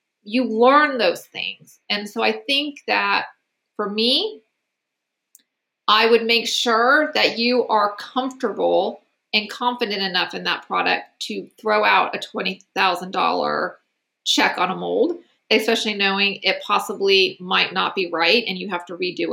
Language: English